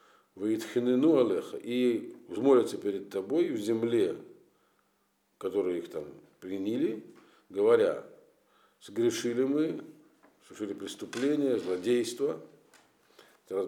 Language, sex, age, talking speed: Russian, male, 50-69, 75 wpm